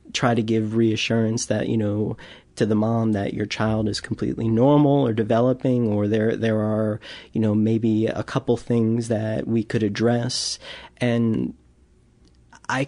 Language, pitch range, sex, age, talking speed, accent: English, 105-120 Hz, male, 30-49, 160 wpm, American